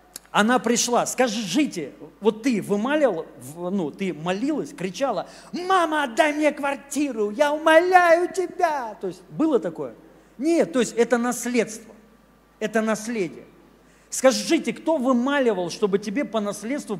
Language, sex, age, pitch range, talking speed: Russian, male, 40-59, 220-295 Hz, 130 wpm